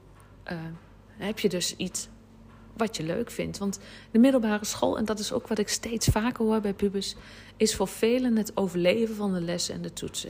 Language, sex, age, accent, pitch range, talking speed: Dutch, female, 40-59, Dutch, 175-225 Hz, 205 wpm